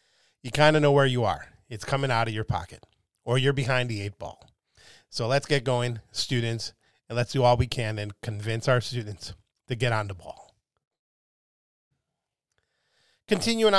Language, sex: English, male